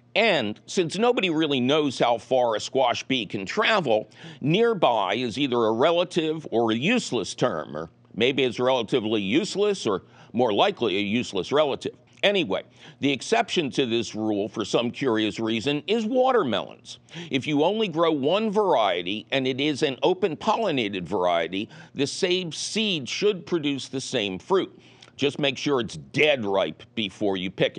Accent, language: American, English